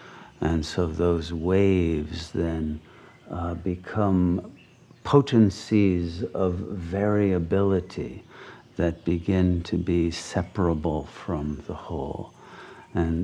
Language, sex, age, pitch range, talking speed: English, male, 50-69, 80-95 Hz, 85 wpm